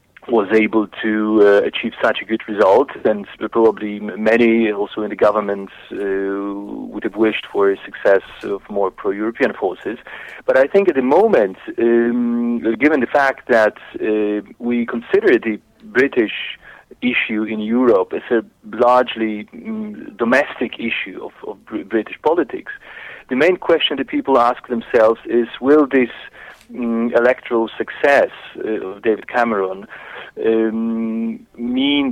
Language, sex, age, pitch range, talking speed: English, male, 40-59, 105-125 Hz, 140 wpm